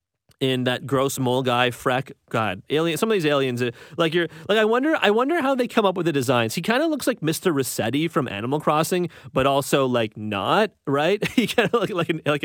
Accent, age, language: American, 30-49, English